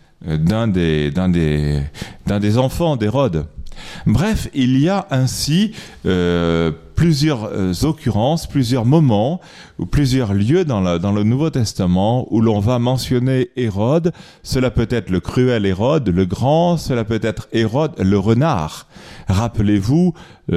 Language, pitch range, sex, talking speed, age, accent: French, 90-125 Hz, male, 145 wpm, 40-59, French